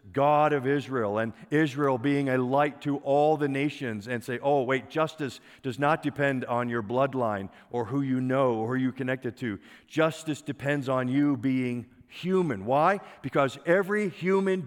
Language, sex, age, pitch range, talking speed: English, male, 50-69, 135-175 Hz, 170 wpm